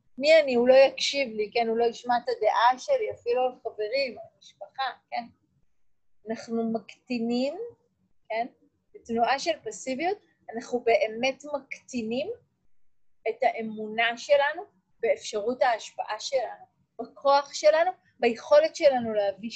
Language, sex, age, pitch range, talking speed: Hebrew, female, 30-49, 230-315 Hz, 115 wpm